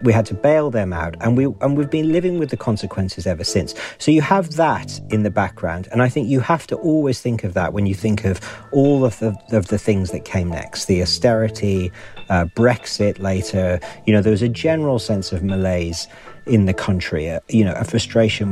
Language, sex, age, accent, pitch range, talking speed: English, male, 40-59, British, 95-125 Hz, 225 wpm